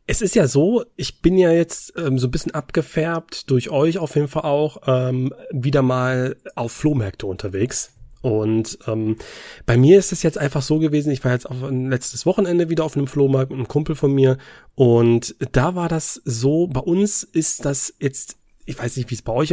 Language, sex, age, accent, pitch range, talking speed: German, male, 30-49, German, 125-170 Hz, 210 wpm